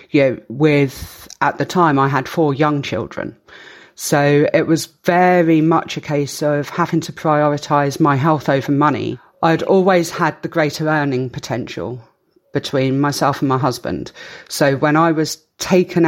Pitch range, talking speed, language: 145-175 Hz, 155 wpm, English